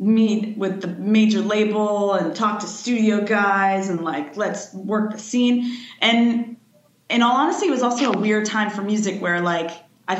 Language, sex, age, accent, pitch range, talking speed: English, female, 20-39, American, 185-225 Hz, 180 wpm